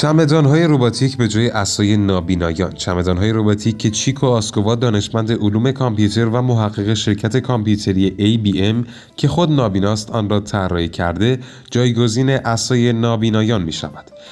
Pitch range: 100-125 Hz